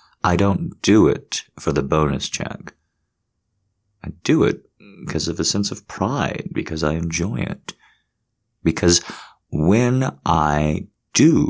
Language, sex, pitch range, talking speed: English, male, 75-100 Hz, 130 wpm